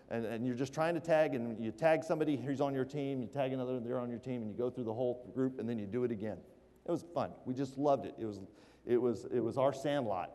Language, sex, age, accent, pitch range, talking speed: English, male, 40-59, American, 120-155 Hz, 290 wpm